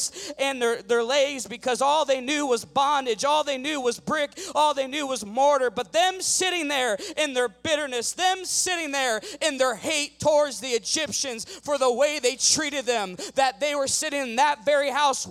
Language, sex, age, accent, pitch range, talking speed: English, male, 20-39, American, 275-320 Hz, 195 wpm